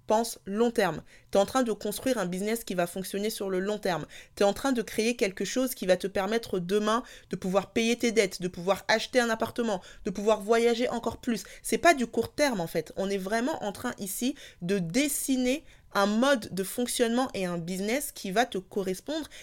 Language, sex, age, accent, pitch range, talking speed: French, female, 20-39, French, 195-260 Hz, 220 wpm